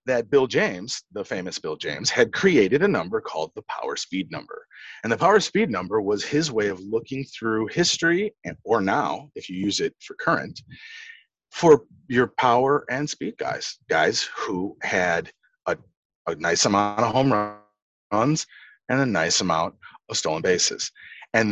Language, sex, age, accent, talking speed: English, male, 30-49, American, 165 wpm